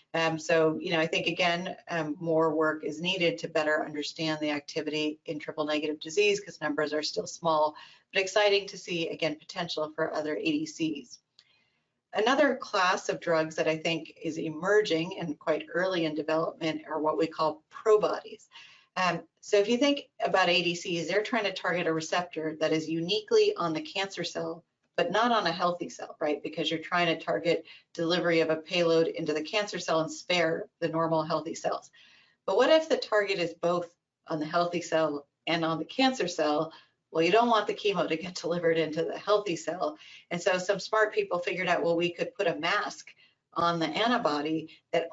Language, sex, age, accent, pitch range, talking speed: English, female, 40-59, American, 160-190 Hz, 195 wpm